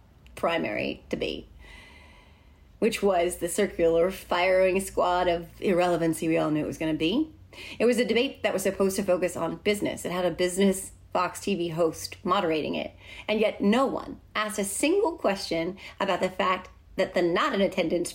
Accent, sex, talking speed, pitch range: American, female, 180 wpm, 175-240 Hz